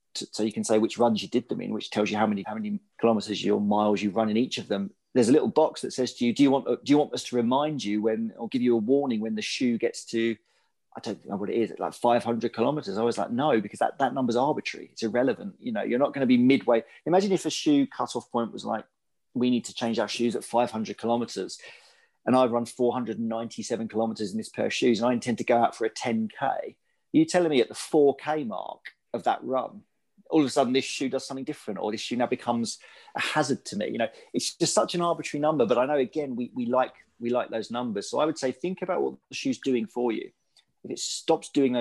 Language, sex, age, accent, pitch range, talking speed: English, male, 40-59, British, 115-165 Hz, 260 wpm